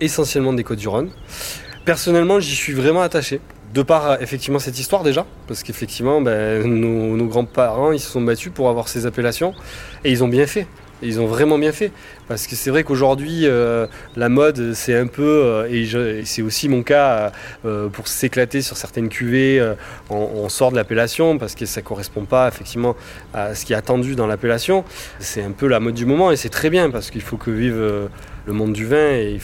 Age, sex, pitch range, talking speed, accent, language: 20-39, male, 115-145 Hz, 220 wpm, French, French